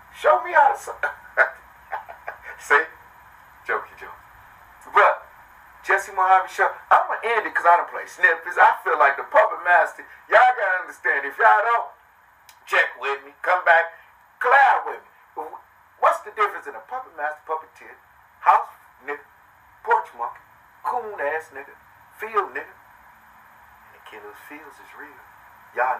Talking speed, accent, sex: 155 wpm, American, male